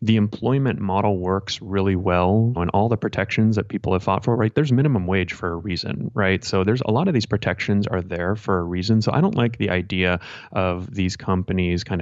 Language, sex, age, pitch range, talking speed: English, male, 30-49, 90-105 Hz, 225 wpm